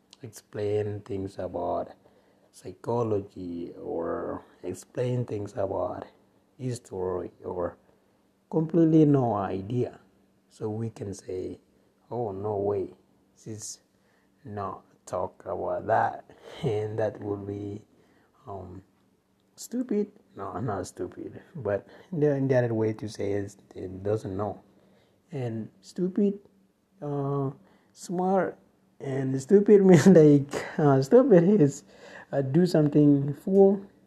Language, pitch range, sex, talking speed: English, 100-150 Hz, male, 105 wpm